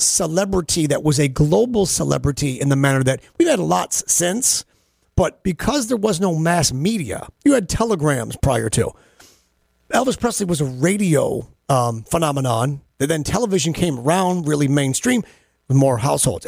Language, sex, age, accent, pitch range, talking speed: English, male, 40-59, American, 130-180 Hz, 155 wpm